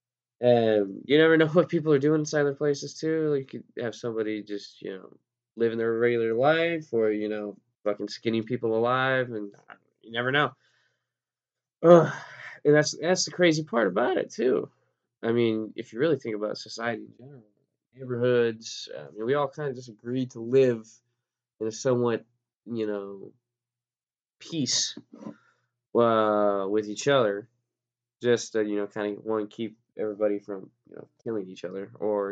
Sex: male